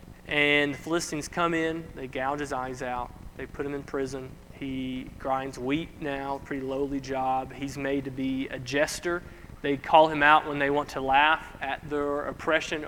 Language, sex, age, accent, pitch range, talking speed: English, male, 30-49, American, 135-160 Hz, 185 wpm